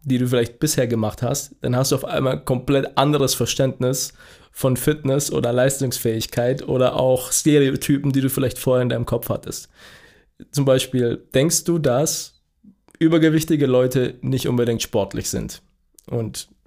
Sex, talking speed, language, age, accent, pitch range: male, 150 wpm, German, 20-39, German, 125-145 Hz